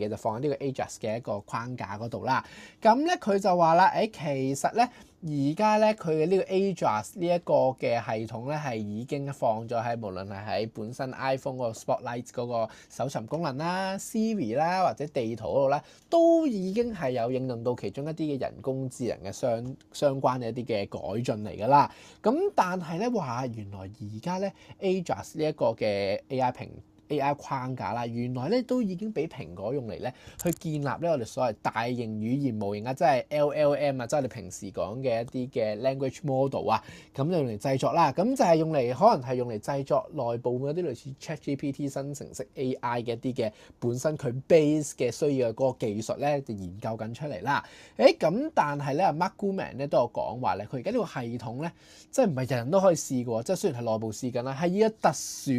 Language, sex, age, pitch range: Chinese, male, 20-39, 120-170 Hz